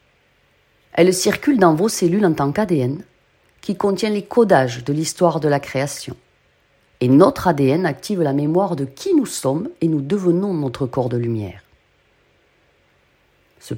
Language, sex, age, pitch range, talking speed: French, female, 40-59, 130-185 Hz, 150 wpm